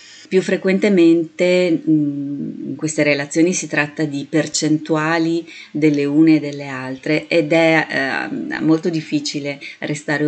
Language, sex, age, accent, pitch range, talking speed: Italian, female, 30-49, native, 145-165 Hz, 115 wpm